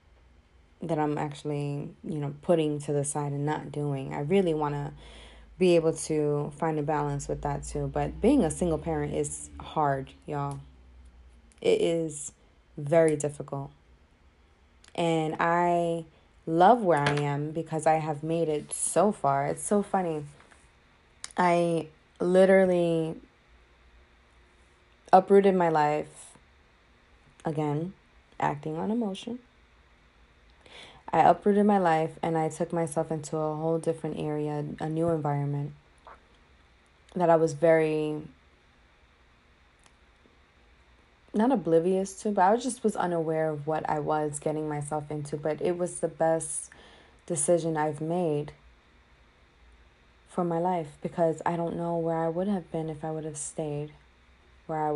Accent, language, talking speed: American, English, 135 wpm